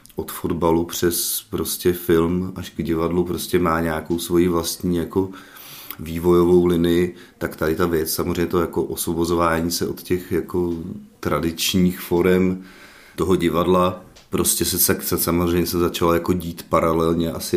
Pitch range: 80-90 Hz